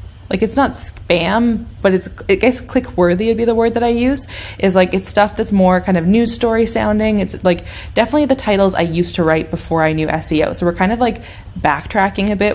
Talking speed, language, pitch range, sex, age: 235 wpm, English, 170-210 Hz, female, 20-39